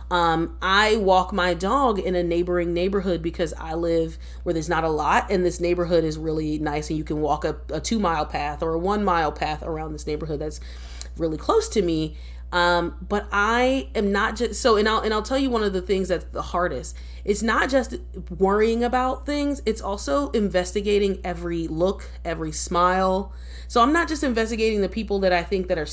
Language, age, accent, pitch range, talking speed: English, 30-49, American, 165-210 Hz, 210 wpm